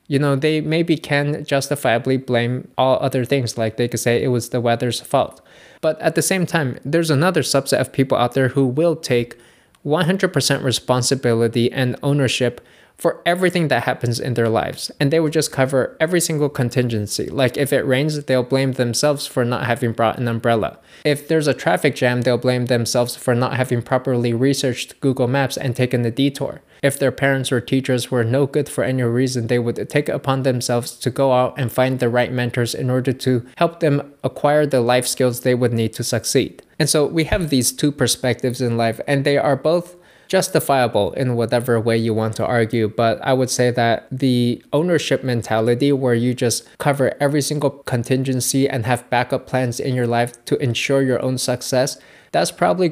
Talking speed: 195 wpm